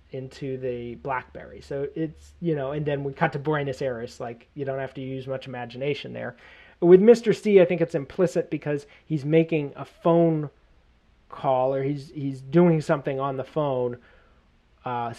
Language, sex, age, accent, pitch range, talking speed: English, male, 30-49, American, 130-155 Hz, 180 wpm